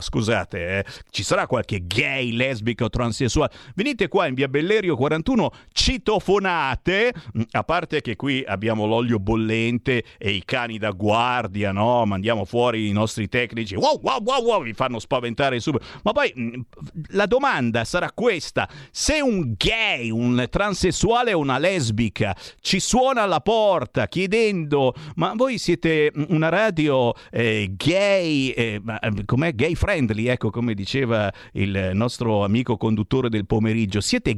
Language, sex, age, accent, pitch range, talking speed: Italian, male, 50-69, native, 100-145 Hz, 145 wpm